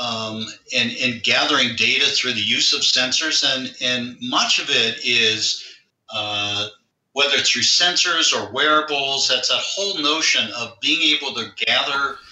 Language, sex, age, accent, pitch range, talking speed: English, male, 50-69, American, 110-130 Hz, 155 wpm